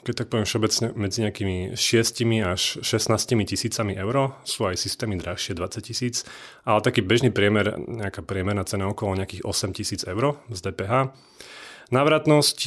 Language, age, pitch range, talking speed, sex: Slovak, 30-49, 100-120 Hz, 150 wpm, male